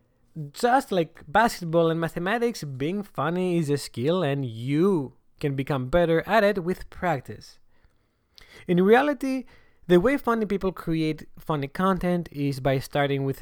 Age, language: 20-39, English